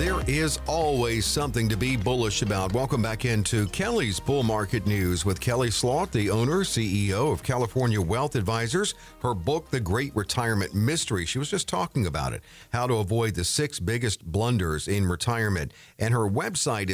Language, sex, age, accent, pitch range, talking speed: English, male, 50-69, American, 100-125 Hz, 175 wpm